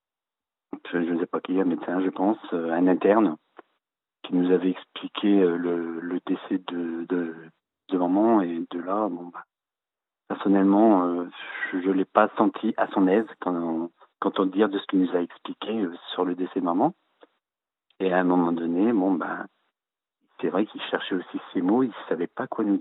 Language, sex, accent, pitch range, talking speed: French, male, French, 85-95 Hz, 195 wpm